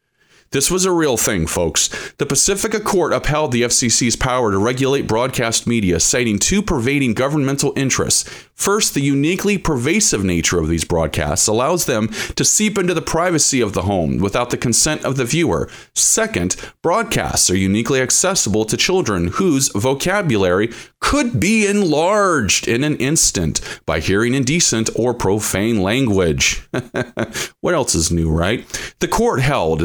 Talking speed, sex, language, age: 150 wpm, male, English, 40-59